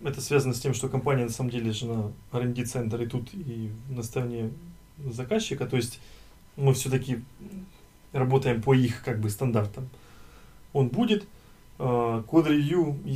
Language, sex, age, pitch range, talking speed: Ukrainian, male, 20-39, 120-145 Hz, 145 wpm